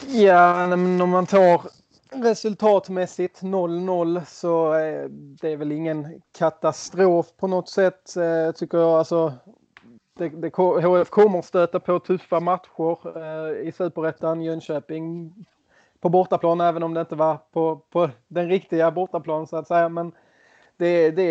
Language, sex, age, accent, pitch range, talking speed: Swedish, male, 20-39, native, 155-180 Hz, 140 wpm